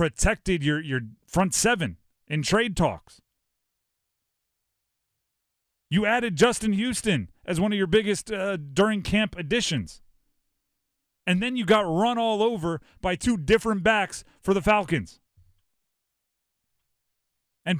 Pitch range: 150-205 Hz